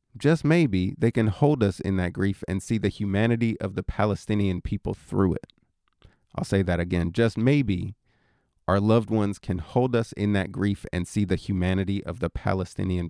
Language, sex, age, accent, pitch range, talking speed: English, male, 30-49, American, 100-120 Hz, 190 wpm